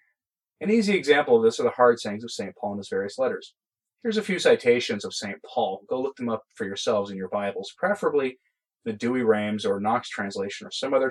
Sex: male